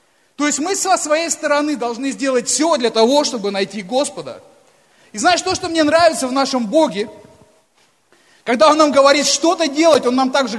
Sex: male